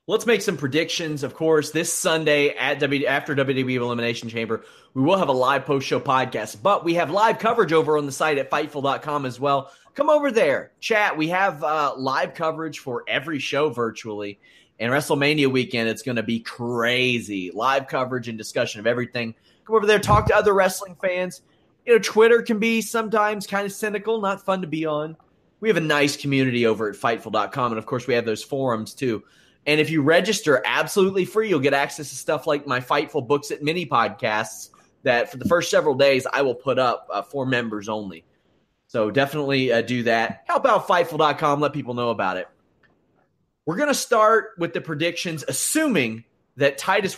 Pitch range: 130-170 Hz